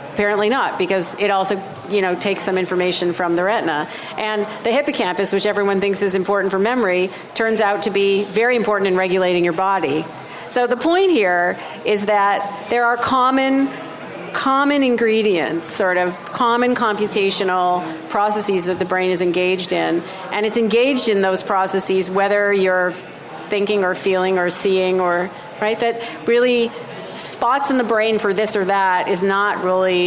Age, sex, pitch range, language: 50-69, female, 185-215 Hz, English